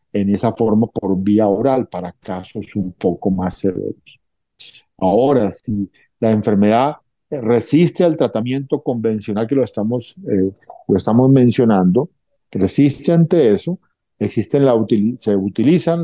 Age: 50-69